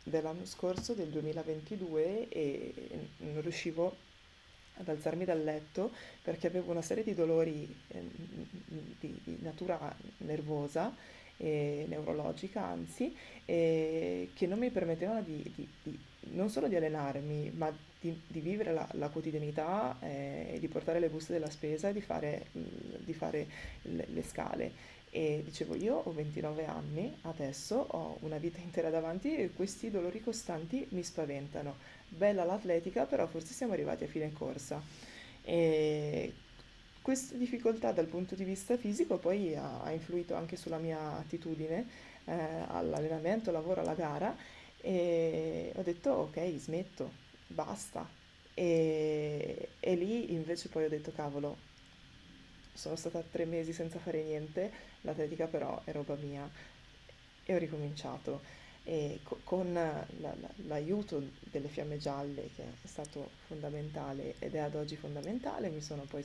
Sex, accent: female, native